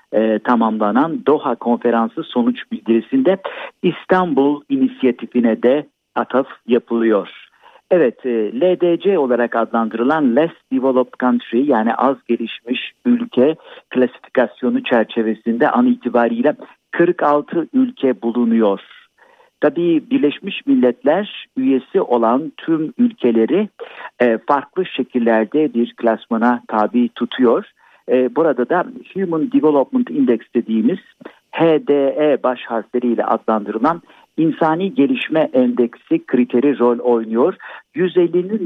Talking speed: 90 wpm